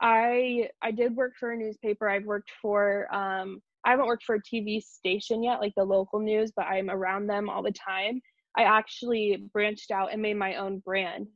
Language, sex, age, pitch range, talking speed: English, female, 20-39, 200-240 Hz, 205 wpm